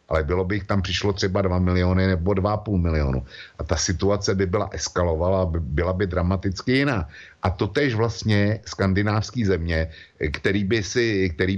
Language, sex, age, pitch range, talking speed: Slovak, male, 60-79, 85-105 Hz, 145 wpm